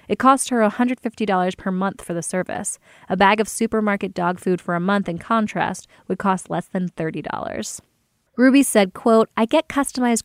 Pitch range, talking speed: 180-215 Hz, 180 wpm